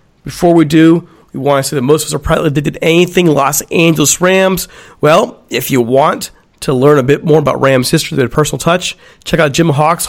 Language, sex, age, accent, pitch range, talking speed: English, male, 40-59, American, 145-180 Hz, 225 wpm